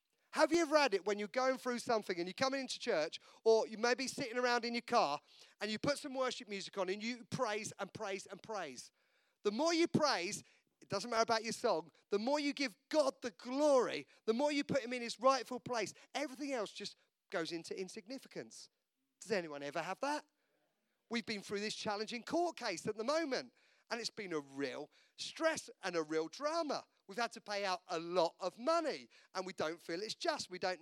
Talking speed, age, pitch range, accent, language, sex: 220 wpm, 40-59, 180-255 Hz, British, English, male